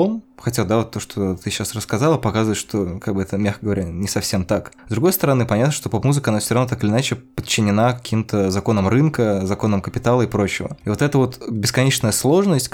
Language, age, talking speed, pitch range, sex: Russian, 20-39, 205 wpm, 105-125 Hz, male